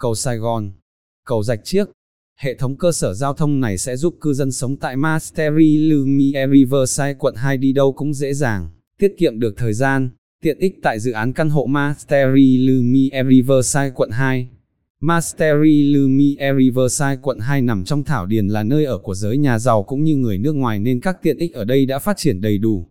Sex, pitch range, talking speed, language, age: male, 120-150 Hz, 205 wpm, Vietnamese, 20-39